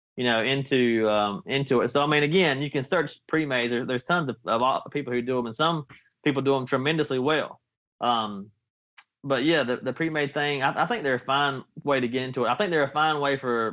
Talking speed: 245 wpm